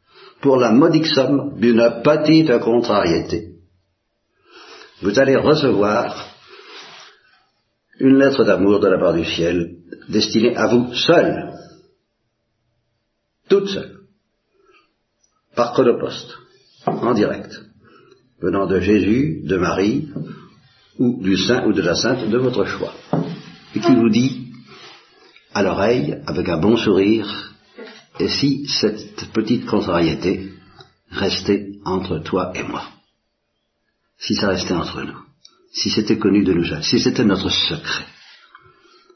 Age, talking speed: 60-79, 120 wpm